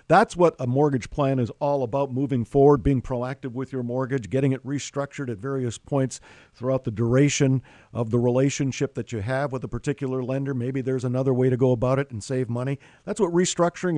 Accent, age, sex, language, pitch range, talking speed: American, 50-69, male, English, 125-155 Hz, 205 wpm